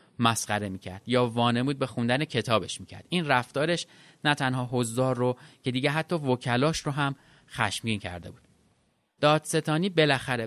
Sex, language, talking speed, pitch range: male, Persian, 145 wpm, 120-155 Hz